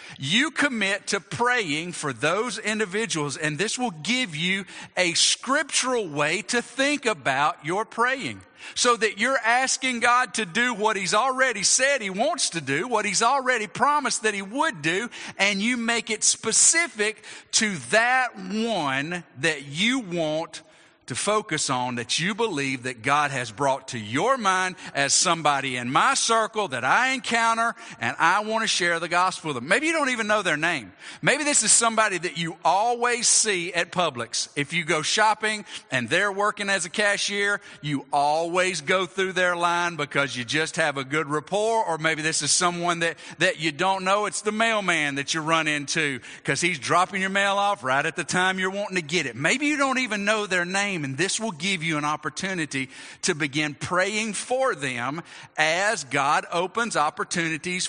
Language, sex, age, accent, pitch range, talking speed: English, male, 50-69, American, 160-230 Hz, 185 wpm